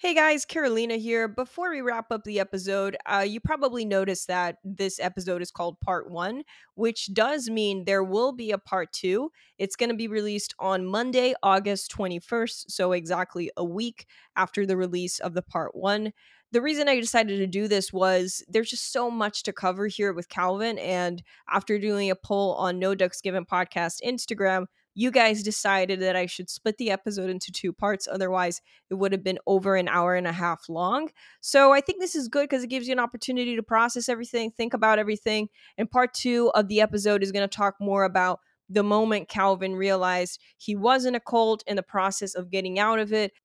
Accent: American